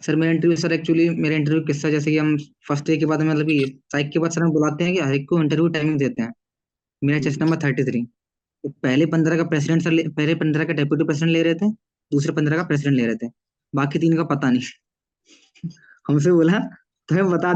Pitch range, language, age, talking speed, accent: 145-175 Hz, Hindi, 20-39, 35 wpm, native